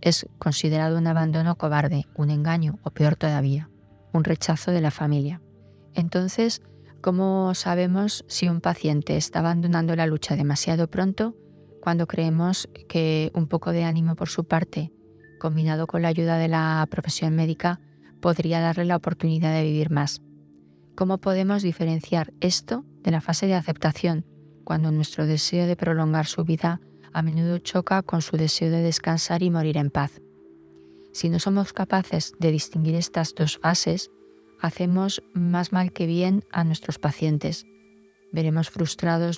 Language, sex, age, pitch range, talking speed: Spanish, female, 20-39, 155-175 Hz, 150 wpm